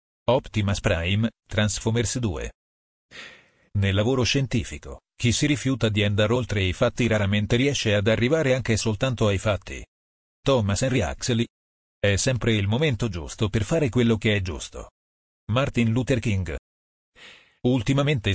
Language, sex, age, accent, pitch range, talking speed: Italian, male, 40-59, native, 90-120 Hz, 135 wpm